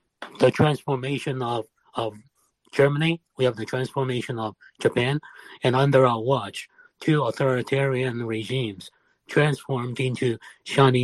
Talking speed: 115 wpm